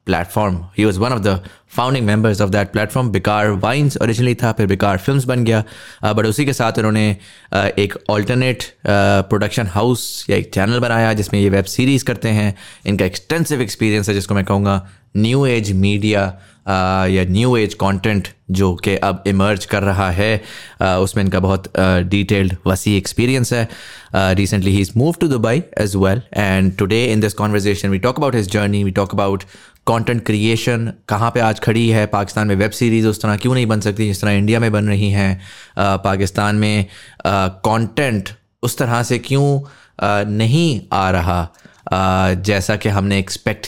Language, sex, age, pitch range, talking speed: English, male, 20-39, 100-115 Hz, 165 wpm